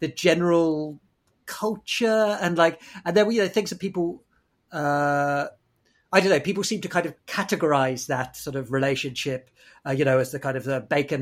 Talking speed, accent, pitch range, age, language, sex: 195 wpm, British, 135-190 Hz, 40-59, English, male